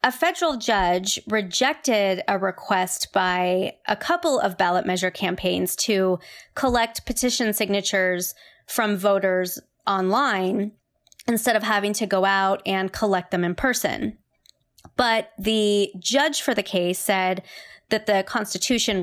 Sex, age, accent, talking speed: female, 20-39, American, 130 wpm